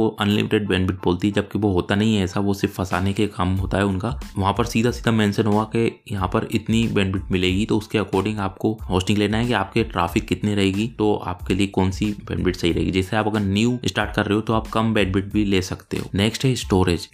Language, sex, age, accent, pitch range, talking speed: Hindi, male, 20-39, native, 95-110 Hz, 85 wpm